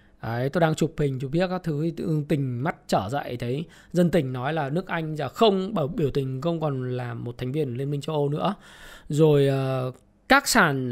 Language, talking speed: Vietnamese, 215 wpm